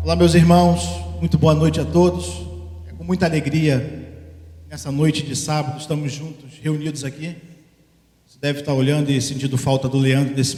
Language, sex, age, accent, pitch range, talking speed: Portuguese, male, 40-59, Brazilian, 140-165 Hz, 170 wpm